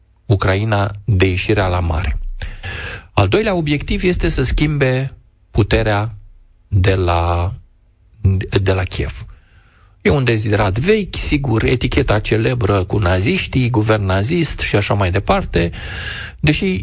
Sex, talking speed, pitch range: male, 120 wpm, 95-125 Hz